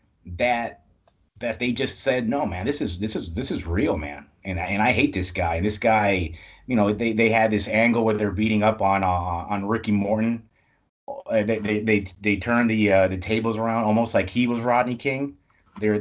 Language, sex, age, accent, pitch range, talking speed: English, male, 30-49, American, 105-115 Hz, 215 wpm